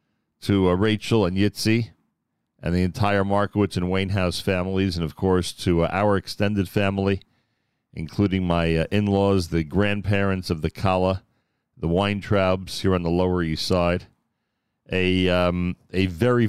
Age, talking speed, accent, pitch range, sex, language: 40-59, 150 wpm, American, 90-105 Hz, male, English